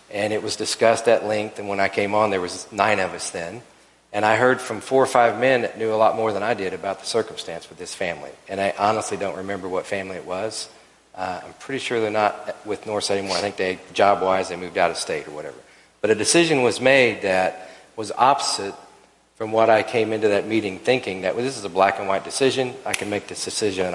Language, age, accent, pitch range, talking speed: English, 40-59, American, 95-115 Hz, 250 wpm